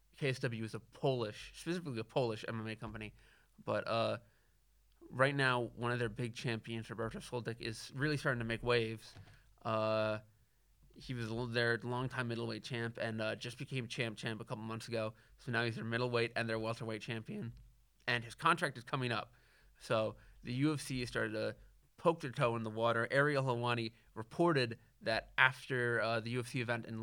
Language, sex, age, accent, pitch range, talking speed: English, male, 20-39, American, 115-135 Hz, 175 wpm